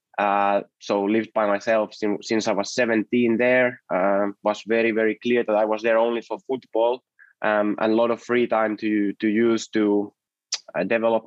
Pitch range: 105-125 Hz